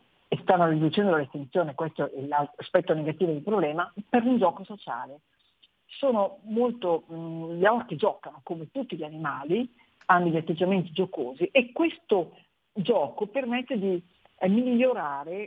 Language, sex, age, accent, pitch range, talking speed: Italian, female, 50-69, native, 165-225 Hz, 140 wpm